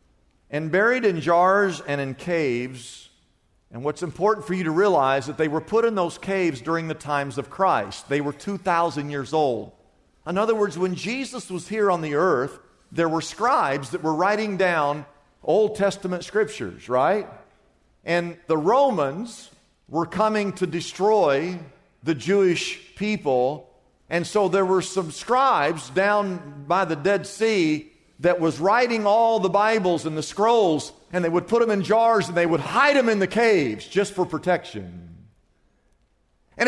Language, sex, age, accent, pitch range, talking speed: English, male, 50-69, American, 165-235 Hz, 165 wpm